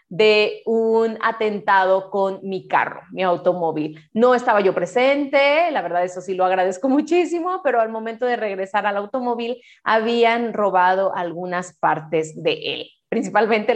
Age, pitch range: 30-49, 195-250 Hz